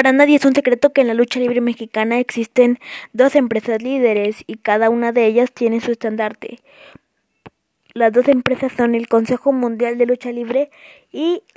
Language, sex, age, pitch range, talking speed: Spanish, female, 20-39, 235-295 Hz, 175 wpm